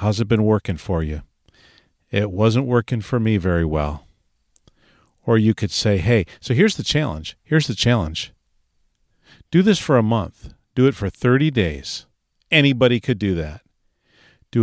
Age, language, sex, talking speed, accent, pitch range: 50-69, English, male, 165 wpm, American, 95-120 Hz